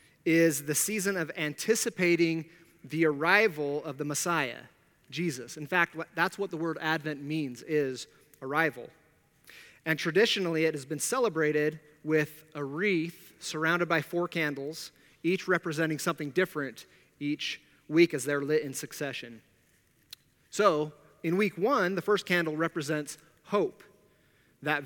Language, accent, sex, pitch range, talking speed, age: English, American, male, 150-180 Hz, 135 wpm, 30-49